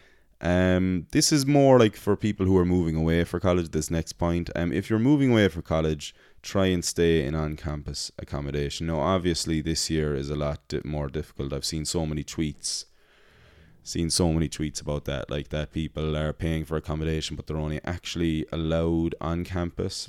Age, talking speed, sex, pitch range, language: 20-39, 195 wpm, male, 75-85 Hz, English